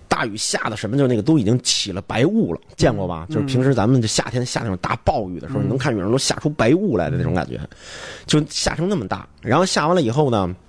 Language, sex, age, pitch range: Chinese, male, 30-49, 95-145 Hz